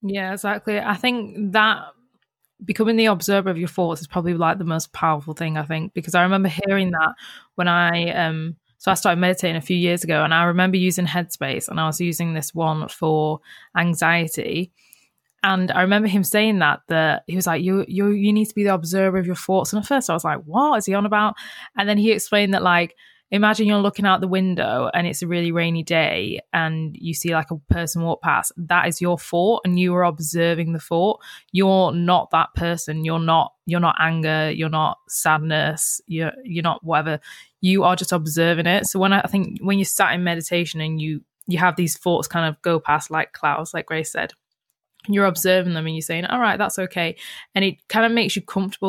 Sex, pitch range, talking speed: female, 165-195 Hz, 220 wpm